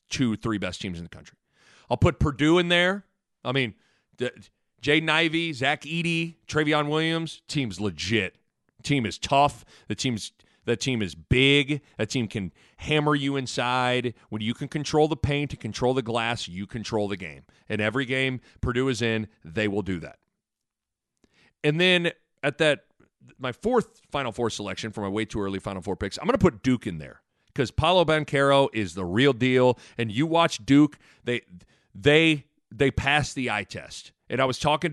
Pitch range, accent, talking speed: 110-140 Hz, American, 185 wpm